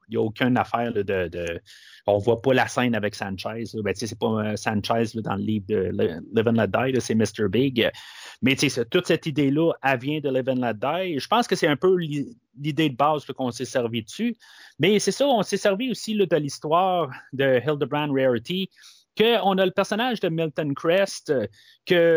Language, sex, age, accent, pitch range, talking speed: French, male, 30-49, Canadian, 115-155 Hz, 210 wpm